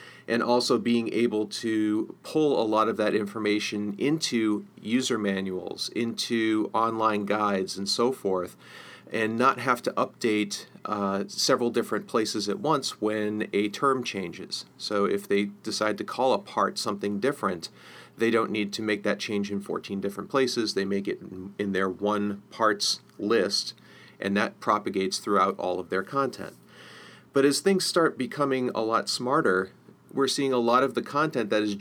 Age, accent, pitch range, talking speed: 40-59, American, 100-120 Hz, 170 wpm